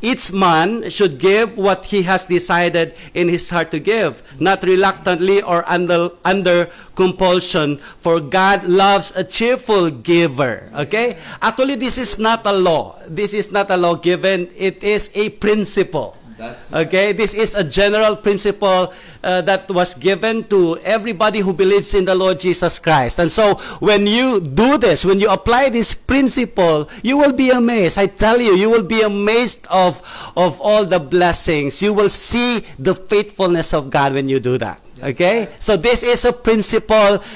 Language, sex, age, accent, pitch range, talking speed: English, male, 50-69, Filipino, 175-225 Hz, 170 wpm